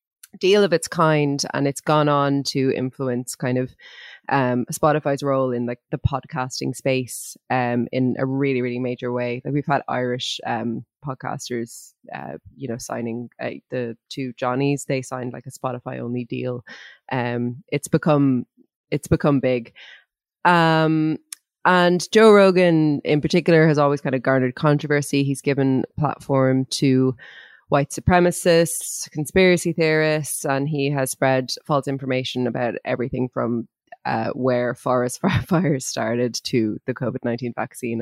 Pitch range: 125-155 Hz